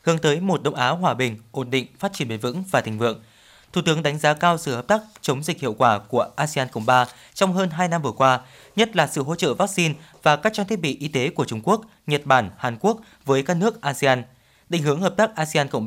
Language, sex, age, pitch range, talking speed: Vietnamese, male, 20-39, 130-175 Hz, 255 wpm